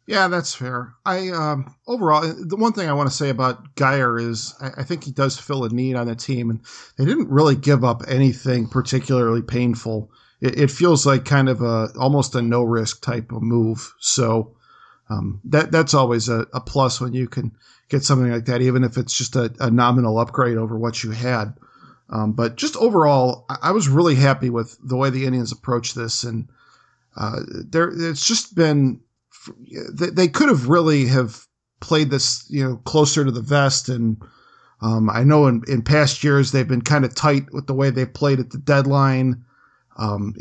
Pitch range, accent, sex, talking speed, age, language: 120-140 Hz, American, male, 195 wpm, 50-69, English